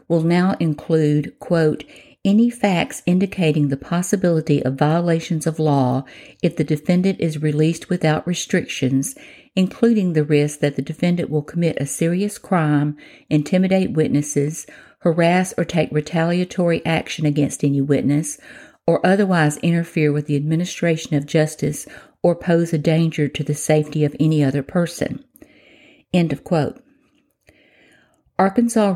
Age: 50-69